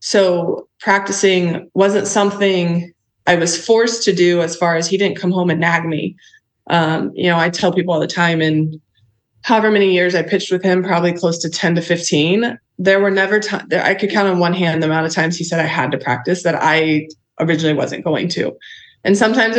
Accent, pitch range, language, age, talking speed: American, 155-180 Hz, English, 20-39, 215 wpm